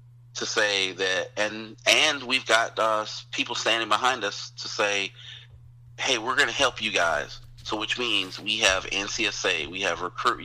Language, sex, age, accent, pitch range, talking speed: English, male, 30-49, American, 105-120 Hz, 170 wpm